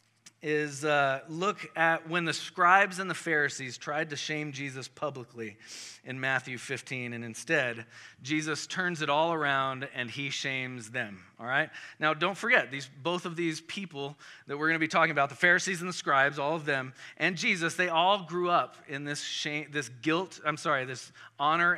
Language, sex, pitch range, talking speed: English, male, 125-165 Hz, 190 wpm